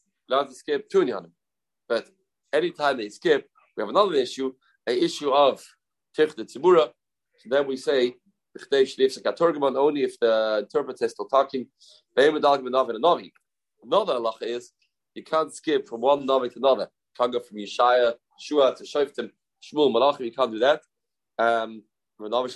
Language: English